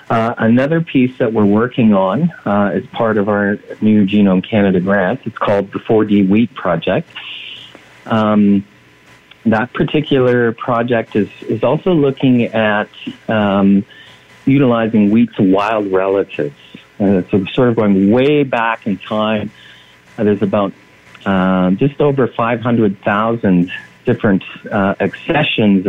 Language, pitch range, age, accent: English, 95-120 Hz, 40-59, American